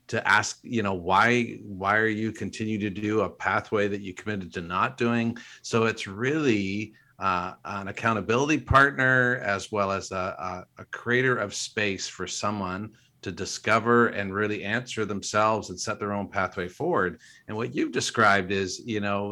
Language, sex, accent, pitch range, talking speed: English, male, American, 100-120 Hz, 170 wpm